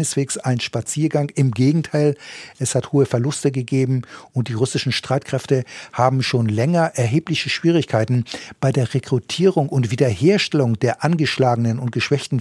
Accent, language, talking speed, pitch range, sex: German, German, 130 wpm, 125-145 Hz, male